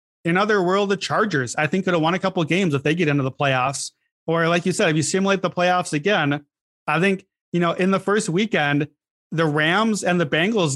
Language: English